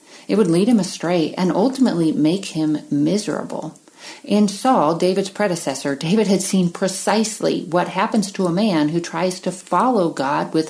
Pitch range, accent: 165-225 Hz, American